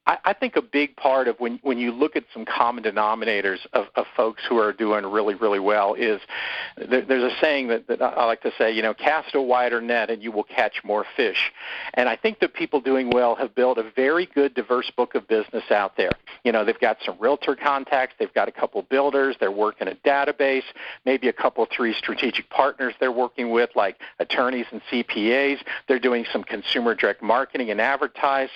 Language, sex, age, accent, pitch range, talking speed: English, male, 50-69, American, 125-140 Hz, 210 wpm